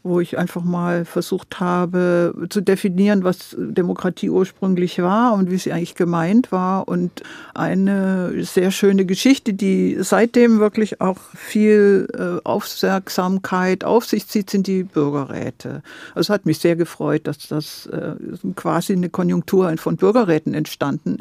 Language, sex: German, female